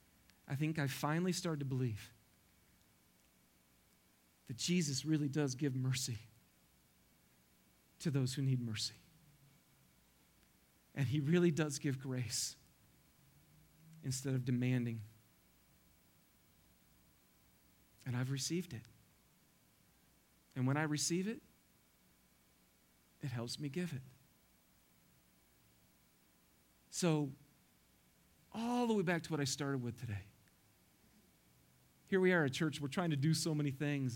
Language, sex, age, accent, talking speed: English, male, 40-59, American, 110 wpm